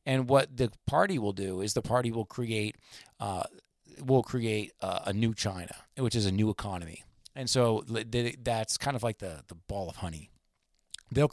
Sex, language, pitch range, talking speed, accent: male, English, 100-125 Hz, 195 wpm, American